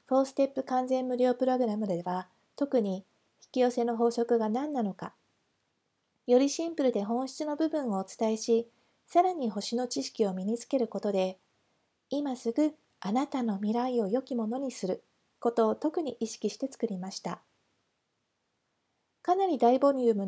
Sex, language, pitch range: female, Japanese, 220-280 Hz